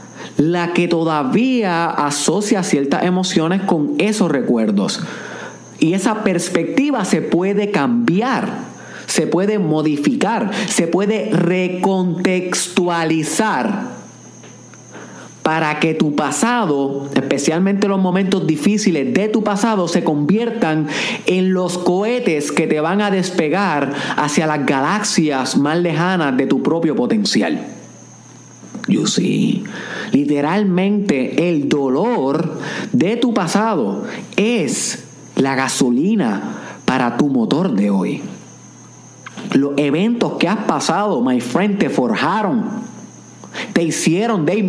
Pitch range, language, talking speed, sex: 160-225 Hz, Spanish, 105 wpm, male